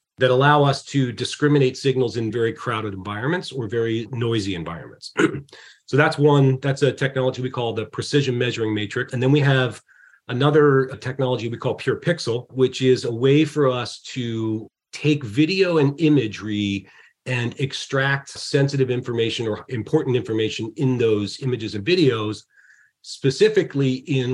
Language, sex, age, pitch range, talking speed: English, male, 40-59, 110-140 Hz, 155 wpm